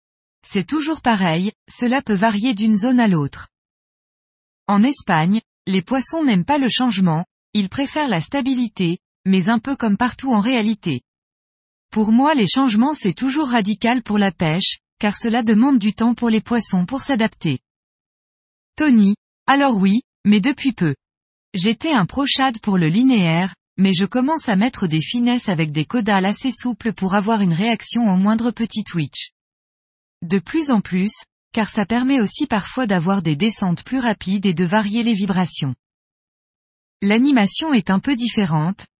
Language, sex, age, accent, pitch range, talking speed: French, female, 20-39, French, 185-245 Hz, 160 wpm